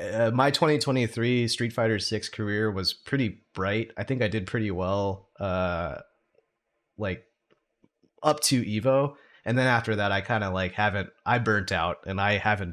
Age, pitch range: 30-49, 95-115 Hz